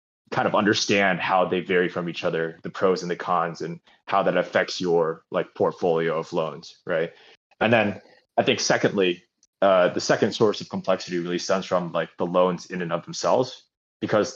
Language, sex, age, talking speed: English, male, 20-39, 190 wpm